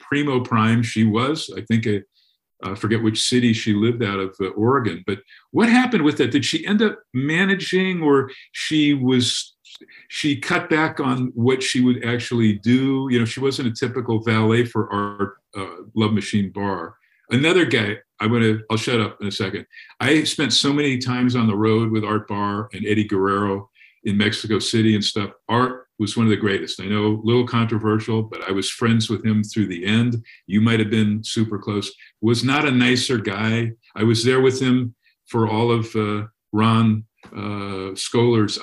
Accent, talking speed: American, 195 wpm